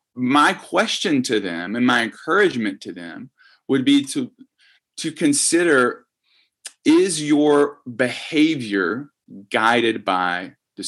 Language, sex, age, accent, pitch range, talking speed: English, male, 30-49, American, 110-165 Hz, 110 wpm